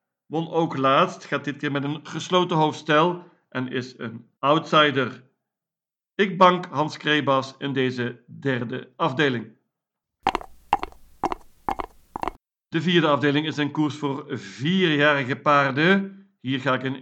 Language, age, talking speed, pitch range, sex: Dutch, 50-69, 125 wpm, 130-170 Hz, male